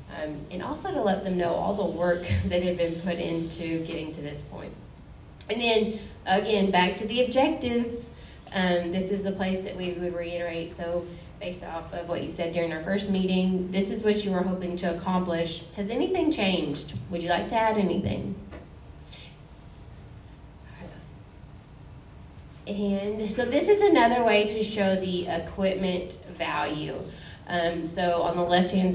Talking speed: 165 wpm